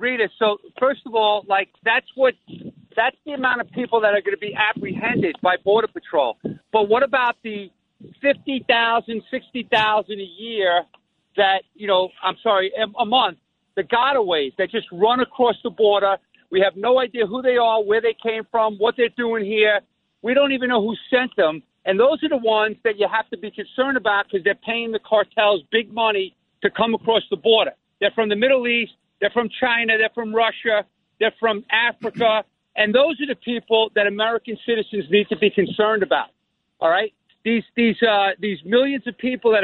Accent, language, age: American, English, 50-69